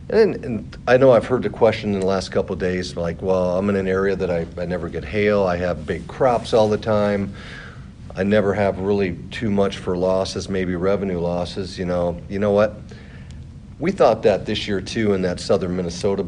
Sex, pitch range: male, 85-100 Hz